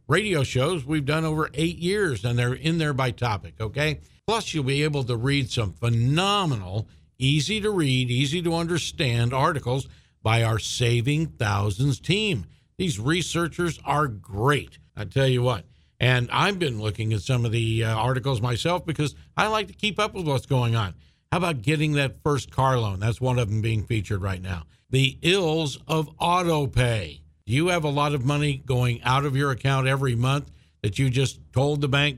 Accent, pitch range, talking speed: American, 120-155 Hz, 185 wpm